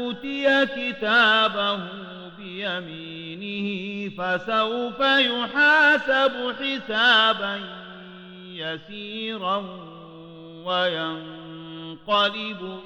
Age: 40-59